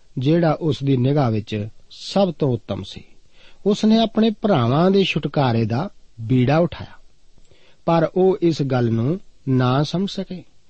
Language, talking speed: Punjabi, 145 wpm